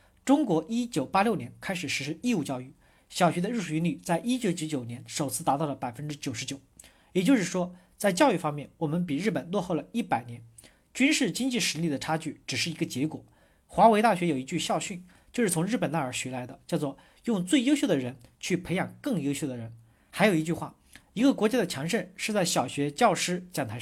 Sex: male